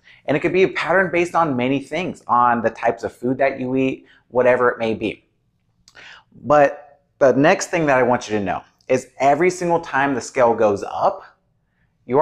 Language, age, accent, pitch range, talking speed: English, 30-49, American, 125-160 Hz, 200 wpm